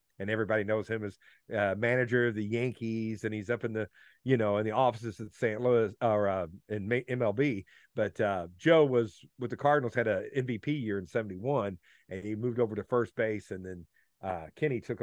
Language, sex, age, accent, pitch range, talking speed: English, male, 50-69, American, 110-145 Hz, 210 wpm